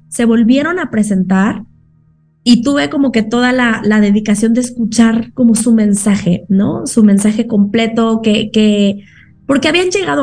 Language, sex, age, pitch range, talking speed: Spanish, female, 20-39, 195-230 Hz, 155 wpm